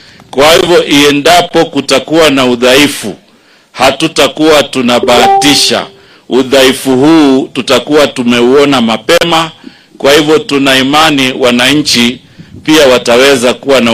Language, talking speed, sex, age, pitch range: English, 100 wpm, male, 50-69, 125-150 Hz